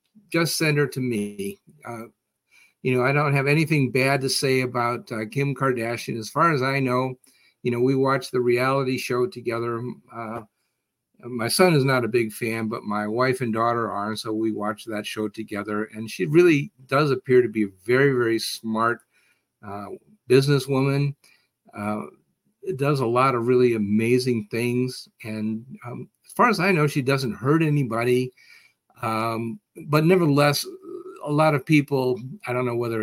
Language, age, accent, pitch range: English, 50-69, American, 115-135 Hz